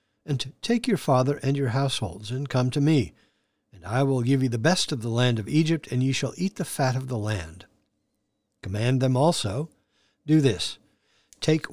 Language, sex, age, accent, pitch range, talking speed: English, male, 60-79, American, 110-150 Hz, 195 wpm